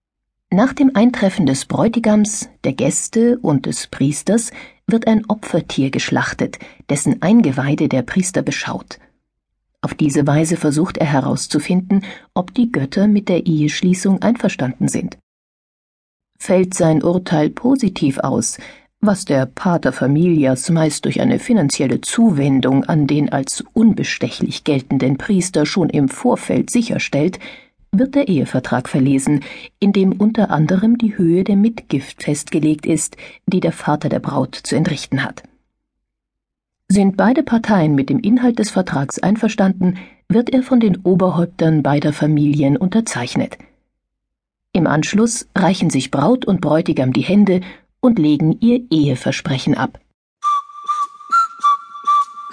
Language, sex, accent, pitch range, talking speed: German, female, German, 150-230 Hz, 125 wpm